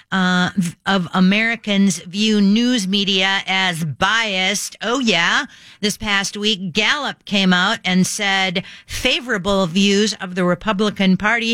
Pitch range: 185-225 Hz